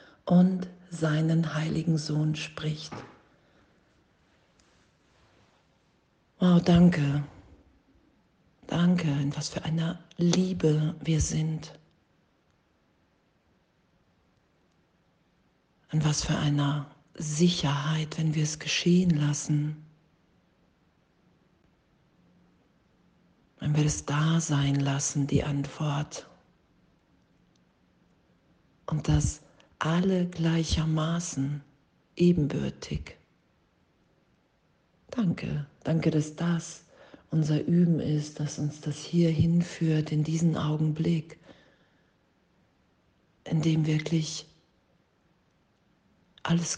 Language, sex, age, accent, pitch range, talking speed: German, female, 50-69, German, 150-165 Hz, 75 wpm